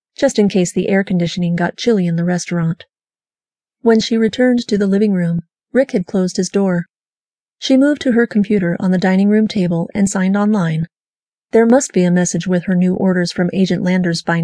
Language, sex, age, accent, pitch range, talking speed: English, female, 30-49, American, 180-220 Hz, 205 wpm